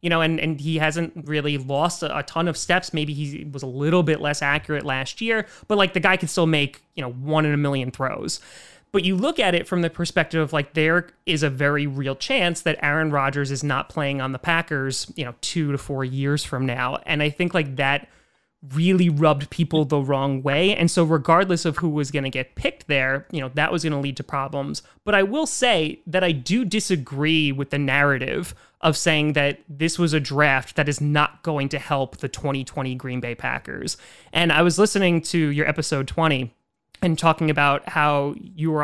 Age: 30-49